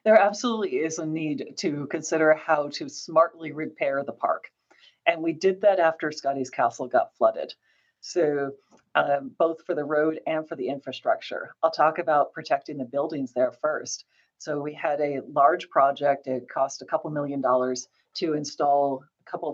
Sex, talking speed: female, 170 wpm